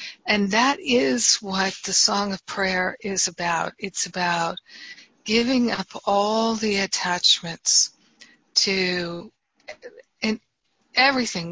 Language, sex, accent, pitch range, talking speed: English, female, American, 185-225 Hz, 105 wpm